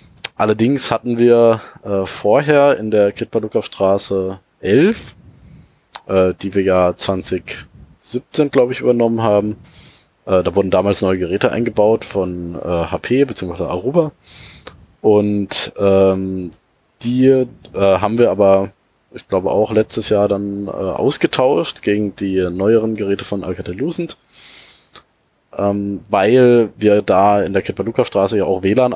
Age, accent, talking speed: 20-39, German, 130 wpm